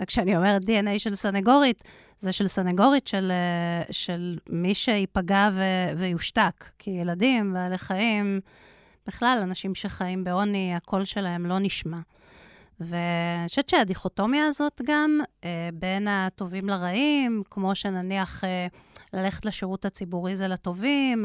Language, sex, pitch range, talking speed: Hebrew, female, 185-230 Hz, 110 wpm